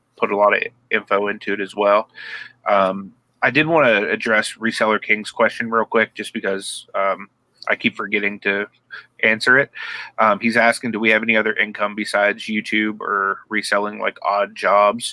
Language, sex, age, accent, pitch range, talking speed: English, male, 30-49, American, 100-115 Hz, 180 wpm